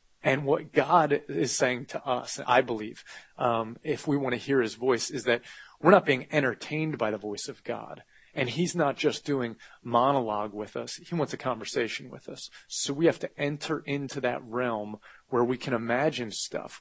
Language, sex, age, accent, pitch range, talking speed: English, male, 30-49, American, 115-150 Hz, 195 wpm